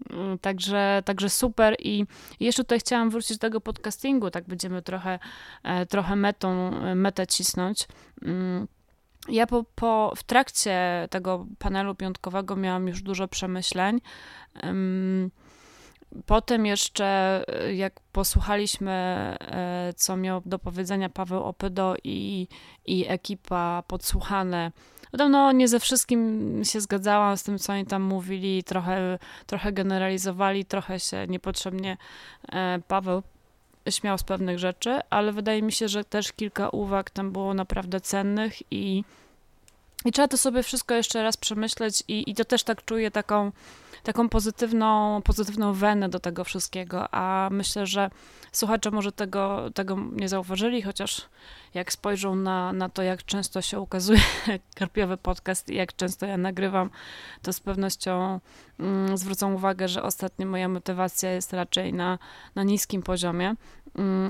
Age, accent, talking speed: 20-39, native, 135 wpm